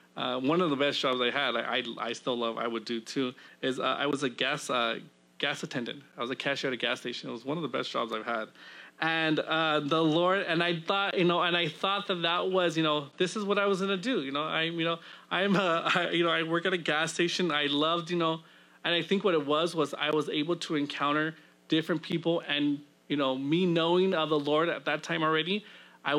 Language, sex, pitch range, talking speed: English, male, 140-170 Hz, 260 wpm